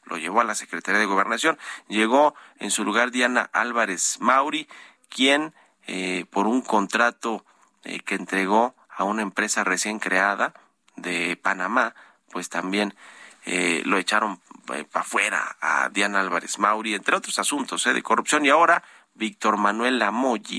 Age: 40-59